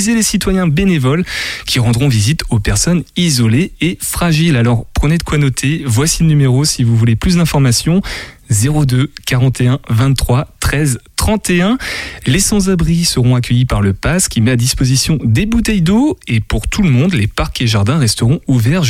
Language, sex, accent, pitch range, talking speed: French, male, French, 120-165 Hz, 170 wpm